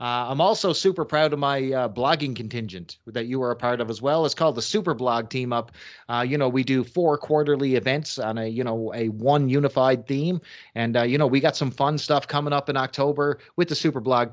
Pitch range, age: 120-155 Hz, 30-49